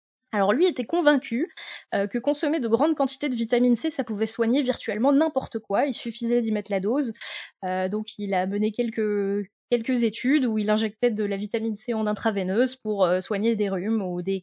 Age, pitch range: 20-39, 200-250 Hz